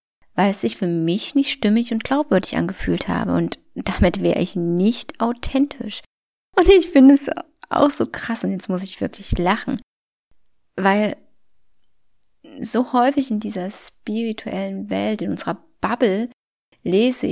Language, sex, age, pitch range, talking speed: German, female, 20-39, 210-280 Hz, 140 wpm